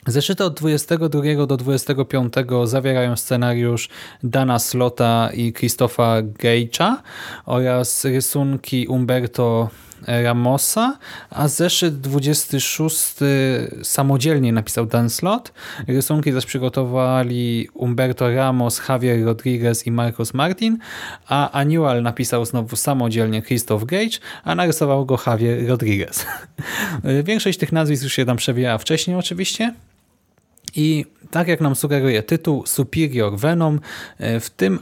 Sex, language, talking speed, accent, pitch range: male, Polish, 110 wpm, native, 120-145 Hz